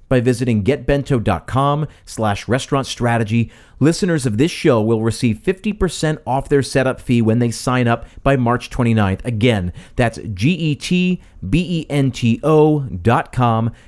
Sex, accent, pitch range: male, American, 115-145 Hz